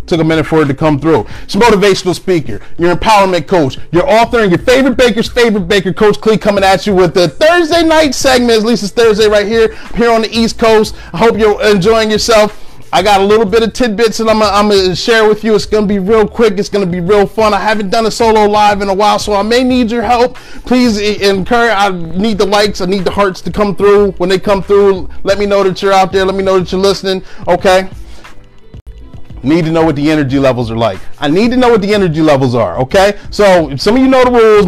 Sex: male